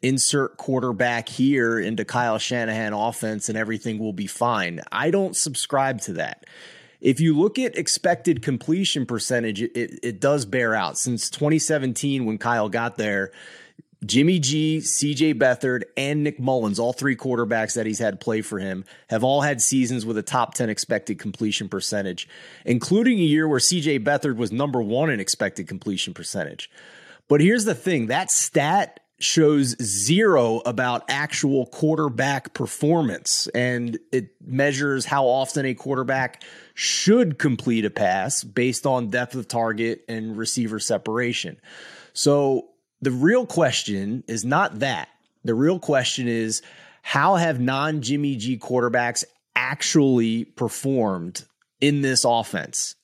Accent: American